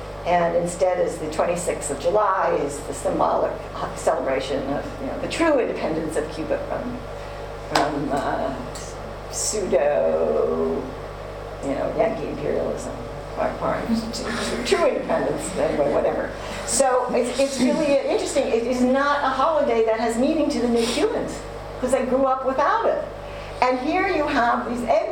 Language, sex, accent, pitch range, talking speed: English, female, American, 200-285 Hz, 145 wpm